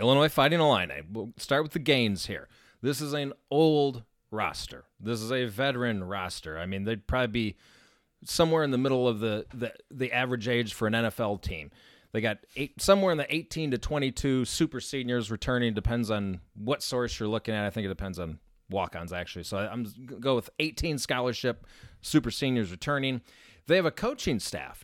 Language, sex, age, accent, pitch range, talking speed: English, male, 30-49, American, 110-140 Hz, 195 wpm